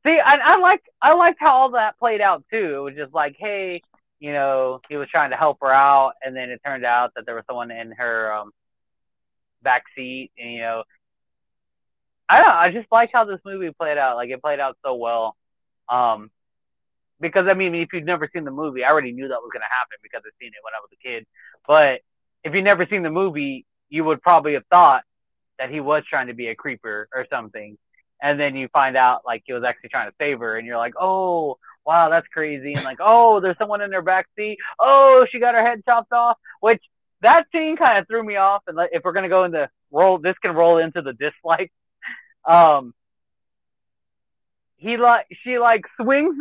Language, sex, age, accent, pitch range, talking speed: English, male, 30-49, American, 135-220 Hz, 225 wpm